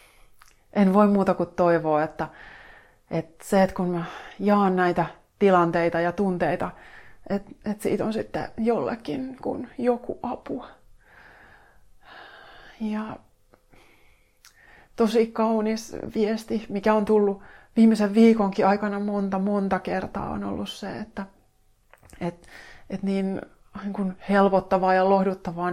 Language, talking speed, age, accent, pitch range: Finnish, 110 wpm, 30-49, native, 170-200 Hz